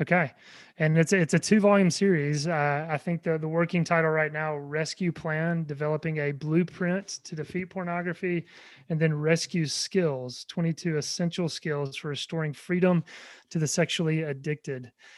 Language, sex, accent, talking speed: English, male, American, 150 wpm